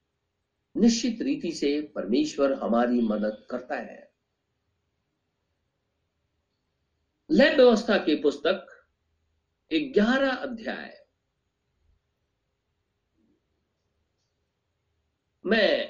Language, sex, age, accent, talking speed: Hindi, male, 50-69, native, 55 wpm